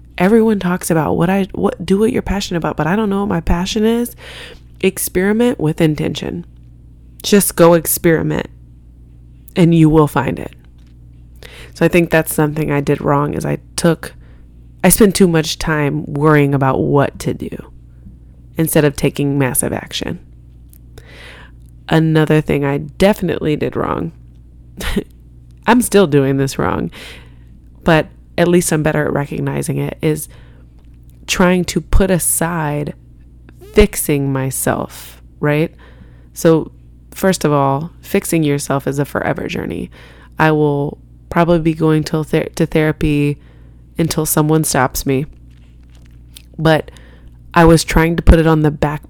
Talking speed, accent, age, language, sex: 140 wpm, American, 20-39, English, female